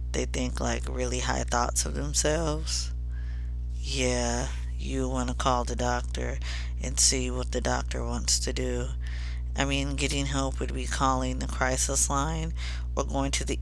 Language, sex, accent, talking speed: English, female, American, 165 wpm